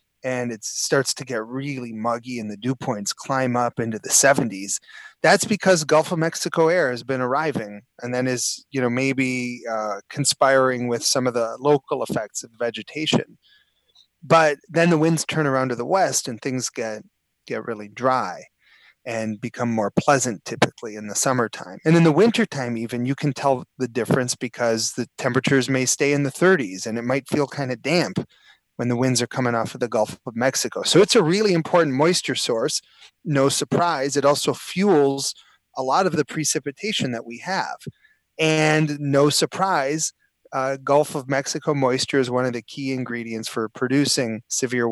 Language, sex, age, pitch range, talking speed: English, male, 30-49, 125-155 Hz, 185 wpm